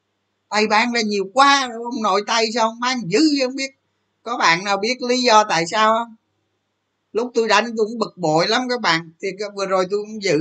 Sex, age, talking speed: male, 20-39, 225 wpm